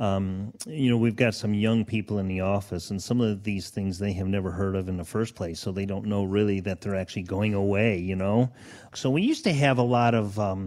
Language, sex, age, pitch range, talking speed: English, male, 40-59, 105-150 Hz, 260 wpm